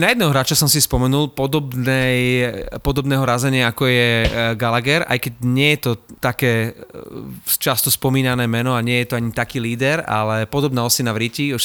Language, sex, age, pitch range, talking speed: Slovak, male, 30-49, 115-145 Hz, 175 wpm